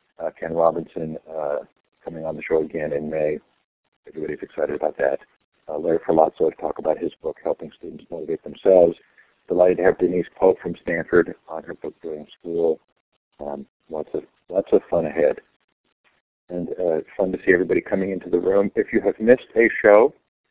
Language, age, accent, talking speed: English, 50-69, American, 180 wpm